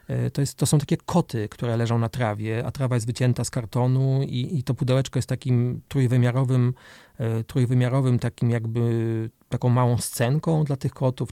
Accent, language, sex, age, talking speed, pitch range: native, Polish, male, 30-49, 165 wpm, 120-140 Hz